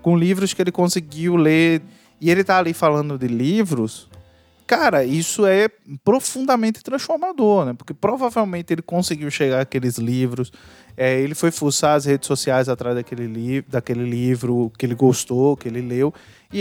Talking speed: 155 wpm